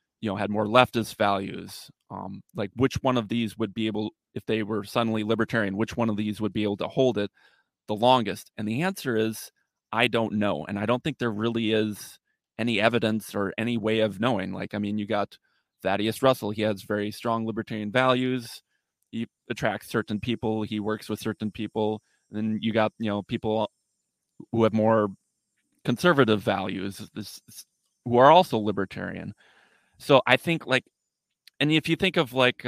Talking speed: 185 wpm